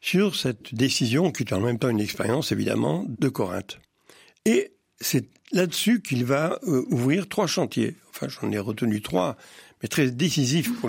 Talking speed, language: 165 wpm, French